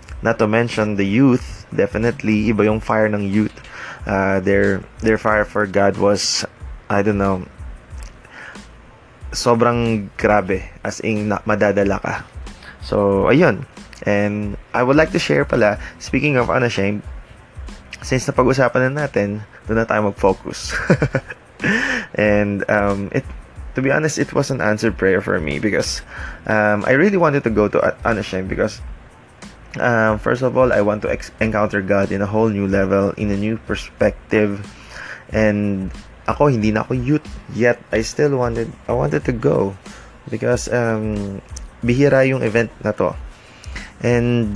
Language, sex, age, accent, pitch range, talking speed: Filipino, male, 20-39, native, 100-120 Hz, 150 wpm